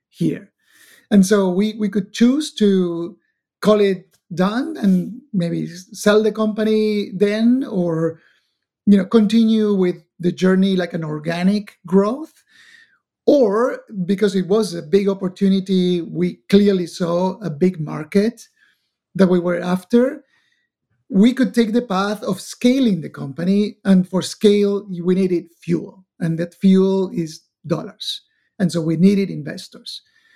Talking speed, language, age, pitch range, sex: 140 wpm, English, 50-69, 180-220 Hz, male